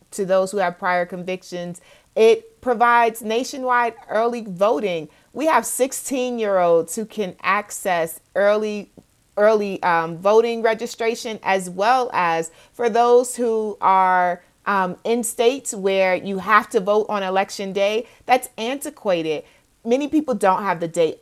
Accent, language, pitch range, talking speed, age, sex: American, English, 180-230 Hz, 140 wpm, 30-49, female